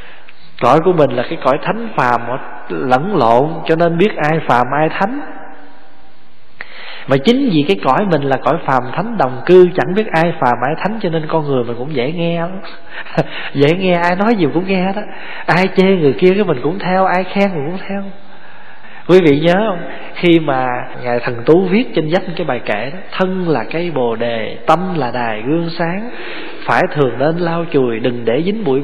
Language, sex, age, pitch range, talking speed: Vietnamese, male, 20-39, 145-195 Hz, 205 wpm